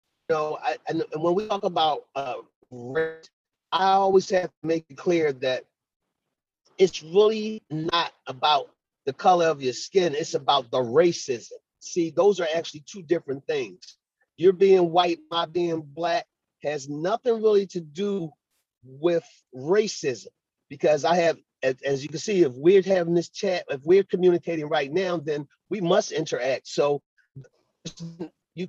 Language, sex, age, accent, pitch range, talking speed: English, male, 40-59, American, 150-190 Hz, 155 wpm